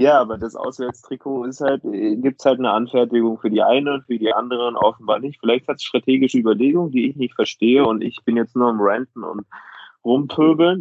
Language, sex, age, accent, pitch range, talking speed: German, male, 20-39, German, 110-130 Hz, 210 wpm